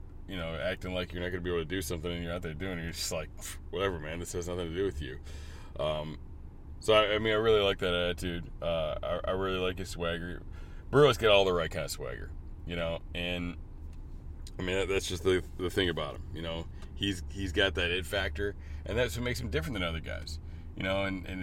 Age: 30-49